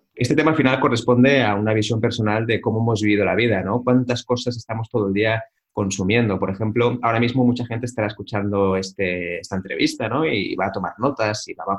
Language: Spanish